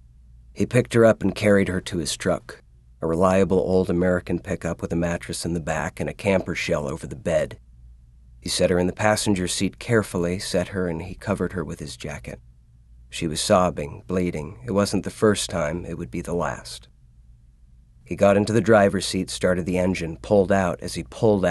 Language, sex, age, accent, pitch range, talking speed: English, male, 40-59, American, 80-95 Hz, 205 wpm